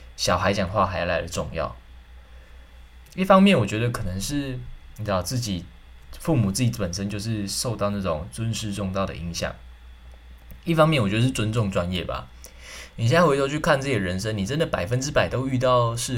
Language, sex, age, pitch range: Chinese, male, 20-39, 80-120 Hz